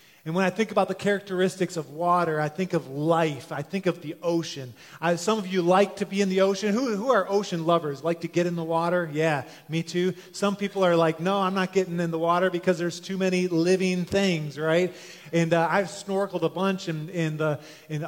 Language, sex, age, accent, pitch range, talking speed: English, male, 30-49, American, 160-195 Hz, 230 wpm